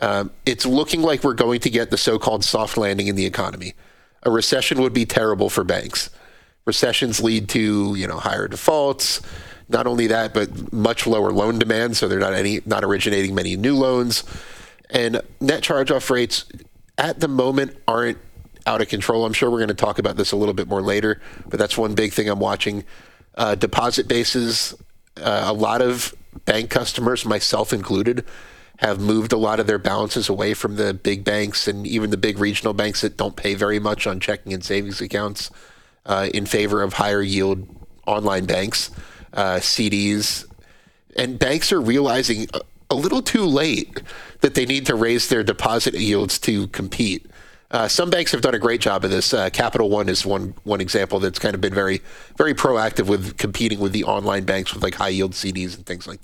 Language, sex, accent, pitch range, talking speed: English, male, American, 100-115 Hz, 195 wpm